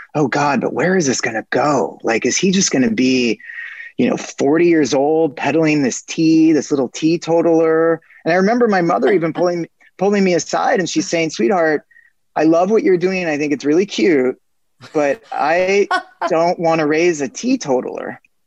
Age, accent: 20-39, American